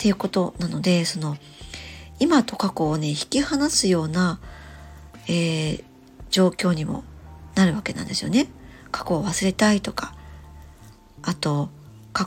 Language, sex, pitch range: Japanese, male, 145-210 Hz